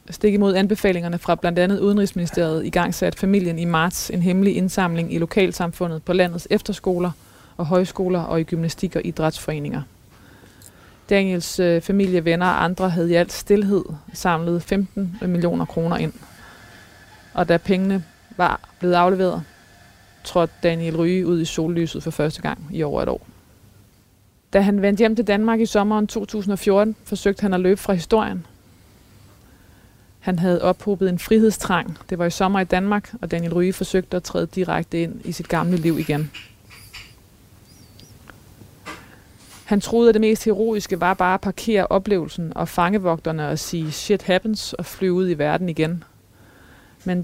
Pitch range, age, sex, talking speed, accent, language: 160-195 Hz, 20-39, female, 155 wpm, native, Danish